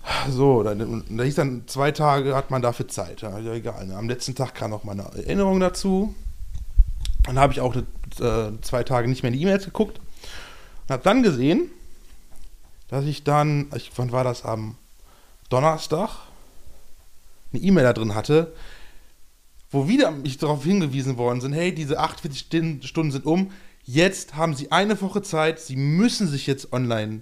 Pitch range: 115-155 Hz